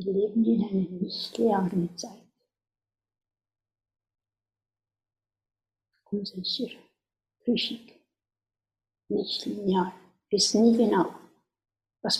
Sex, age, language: female, 60-79, German